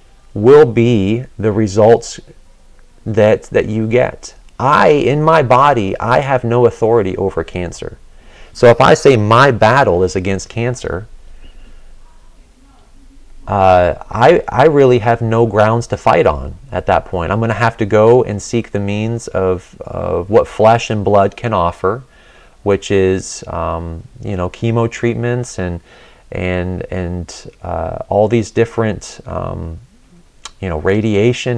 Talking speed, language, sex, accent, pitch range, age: 145 wpm, English, male, American, 95-120 Hz, 30-49